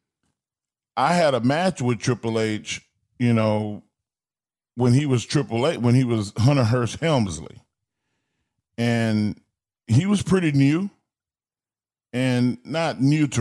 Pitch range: 105-135 Hz